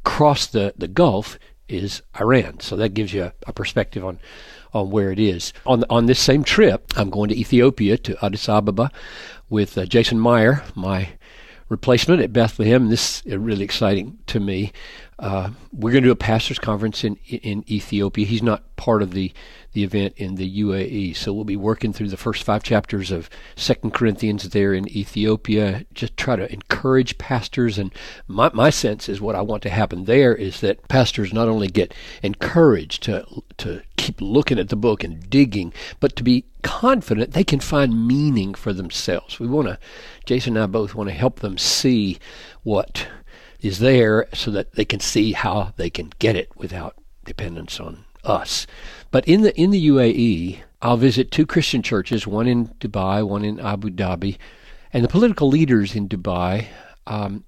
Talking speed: 185 wpm